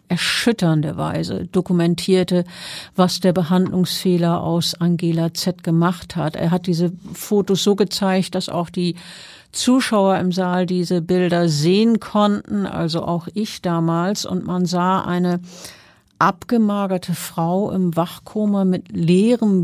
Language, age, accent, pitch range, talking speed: German, 50-69, German, 175-195 Hz, 125 wpm